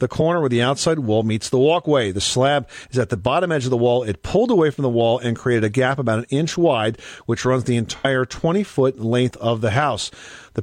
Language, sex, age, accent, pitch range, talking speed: English, male, 40-59, American, 115-145 Hz, 250 wpm